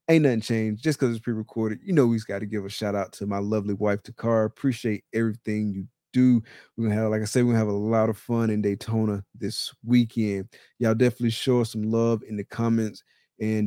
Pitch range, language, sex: 110-120 Hz, English, male